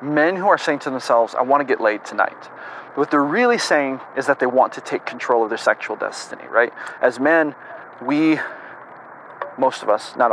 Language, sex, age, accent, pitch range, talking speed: English, male, 30-49, American, 115-145 Hz, 205 wpm